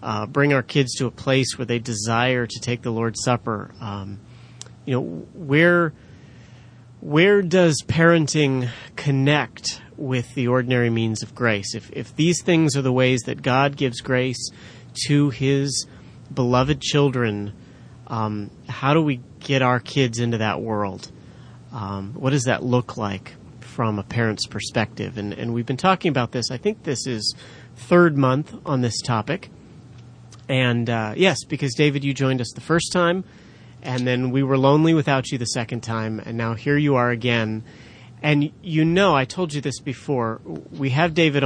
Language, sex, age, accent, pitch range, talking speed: English, male, 30-49, American, 115-140 Hz, 170 wpm